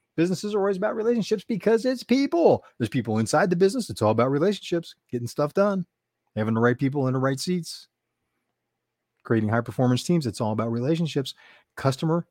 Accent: American